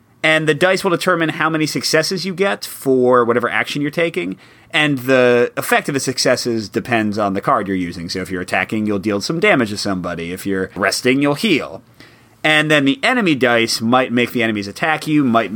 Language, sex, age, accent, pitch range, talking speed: English, male, 30-49, American, 105-145 Hz, 210 wpm